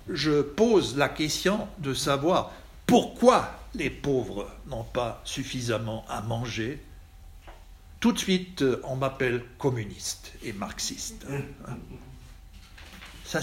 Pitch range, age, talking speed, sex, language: 120-155 Hz, 60-79, 105 wpm, male, French